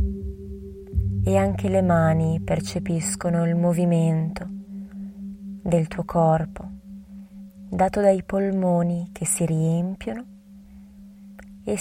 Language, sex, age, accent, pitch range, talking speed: Italian, female, 20-39, native, 160-195 Hz, 85 wpm